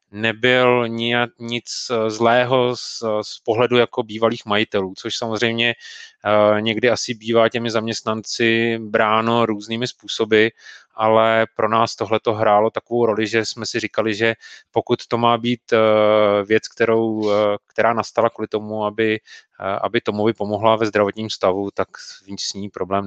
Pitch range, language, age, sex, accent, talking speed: 110-120 Hz, Czech, 30-49, male, native, 140 wpm